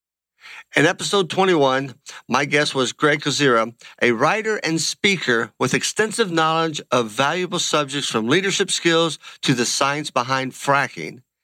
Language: English